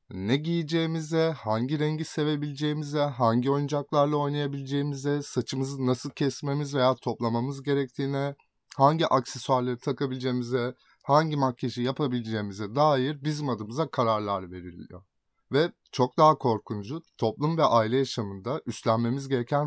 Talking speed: 105 wpm